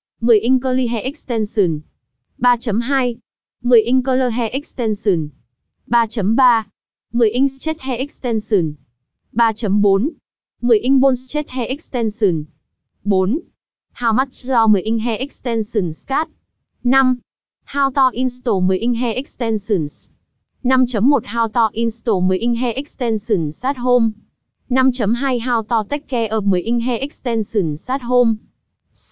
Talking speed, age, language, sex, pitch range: 130 wpm, 20-39, Vietnamese, female, 215-250 Hz